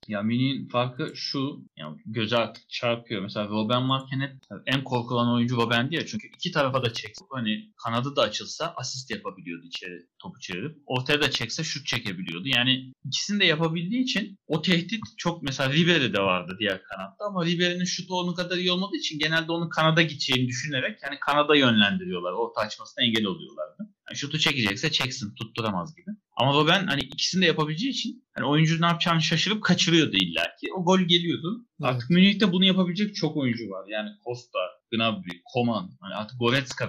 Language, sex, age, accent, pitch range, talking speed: Turkish, male, 30-49, native, 115-175 Hz, 170 wpm